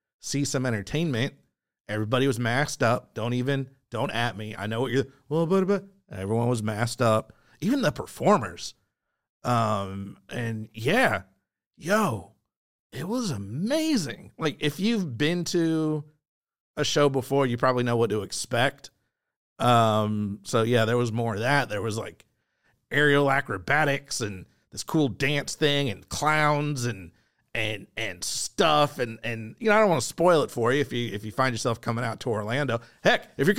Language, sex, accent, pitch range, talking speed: English, male, American, 115-165 Hz, 170 wpm